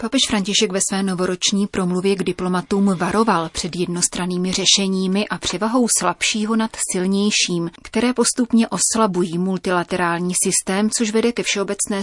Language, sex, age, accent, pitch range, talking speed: Czech, female, 30-49, native, 180-215 Hz, 130 wpm